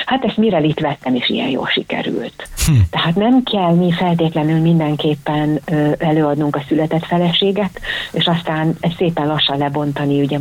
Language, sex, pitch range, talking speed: Hungarian, female, 145-175 Hz, 145 wpm